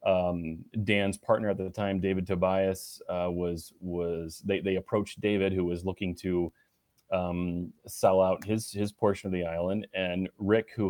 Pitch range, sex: 90-100 Hz, male